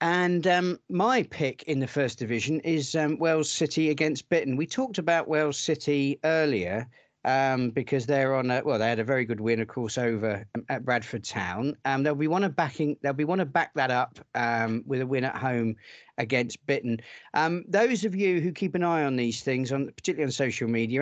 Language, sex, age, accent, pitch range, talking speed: English, male, 40-59, British, 115-145 Hz, 210 wpm